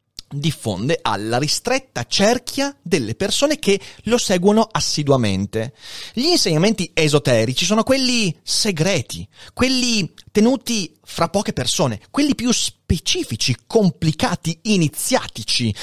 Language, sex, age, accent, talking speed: Italian, male, 30-49, native, 100 wpm